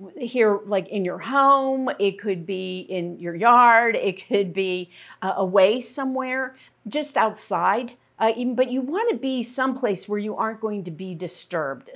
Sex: female